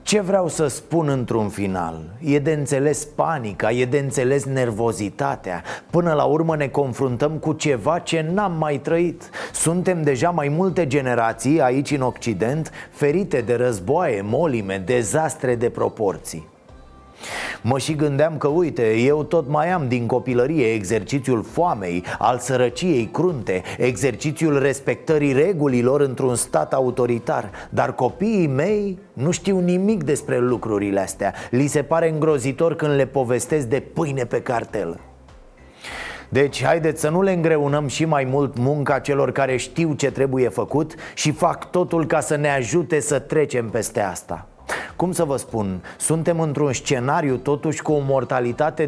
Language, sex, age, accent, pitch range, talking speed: Romanian, male, 30-49, native, 125-165 Hz, 145 wpm